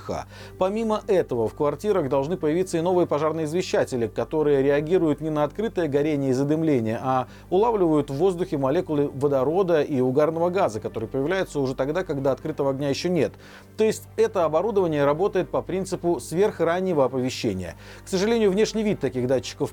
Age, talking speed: 40-59, 155 wpm